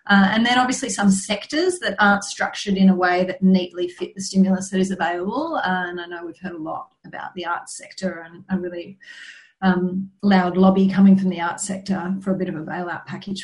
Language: English